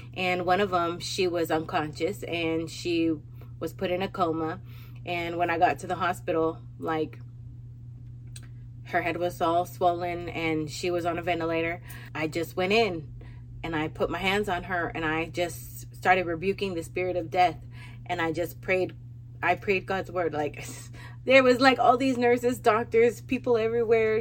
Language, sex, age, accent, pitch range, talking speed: English, female, 20-39, American, 120-195 Hz, 175 wpm